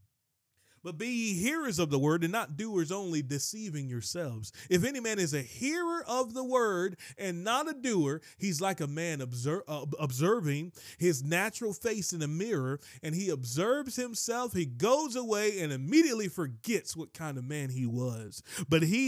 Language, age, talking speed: English, 30-49, 180 wpm